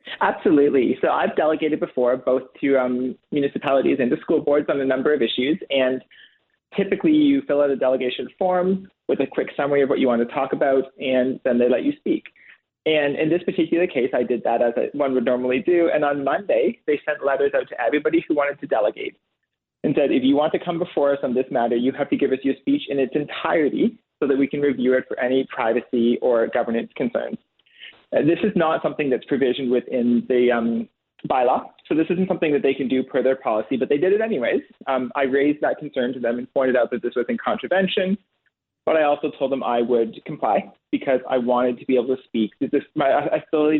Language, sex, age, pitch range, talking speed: English, male, 30-49, 125-155 Hz, 225 wpm